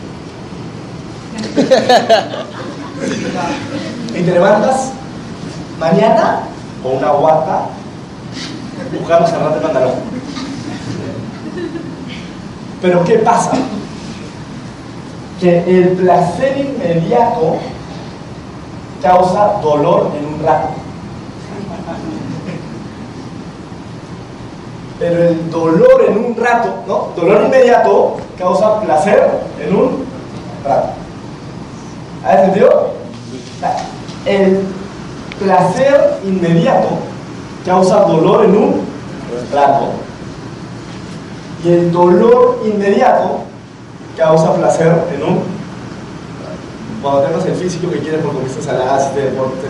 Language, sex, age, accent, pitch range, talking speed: Spanish, male, 30-49, Mexican, 155-205 Hz, 80 wpm